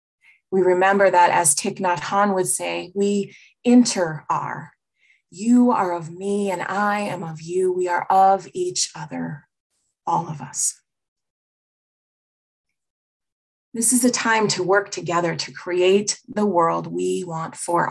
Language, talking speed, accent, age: English, 145 wpm, American, 20-39